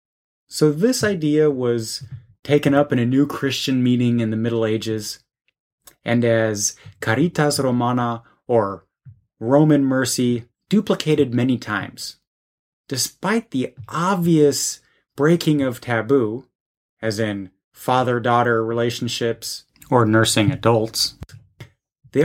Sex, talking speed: male, 105 wpm